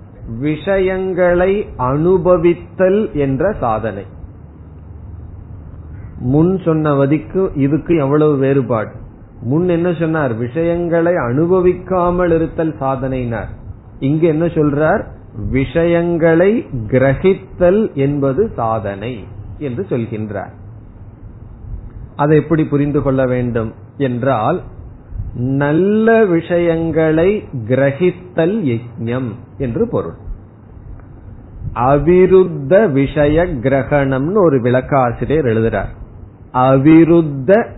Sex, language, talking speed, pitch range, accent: male, Tamil, 65 wpm, 115-170 Hz, native